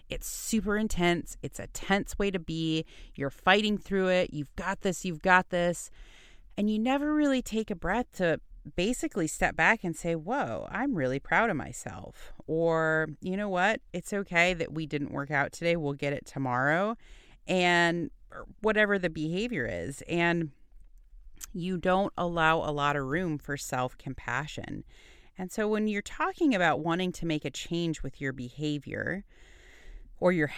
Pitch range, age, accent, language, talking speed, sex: 145-190 Hz, 30-49, American, English, 165 wpm, female